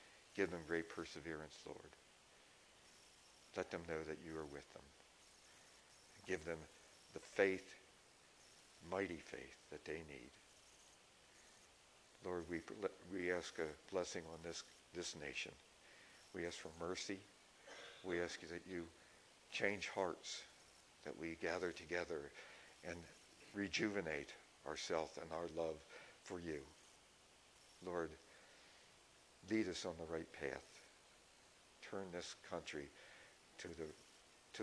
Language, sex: English, male